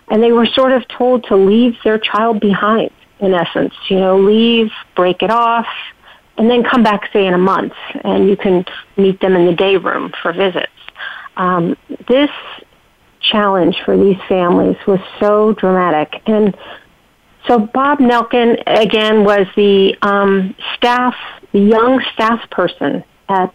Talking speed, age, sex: 155 wpm, 40-59, female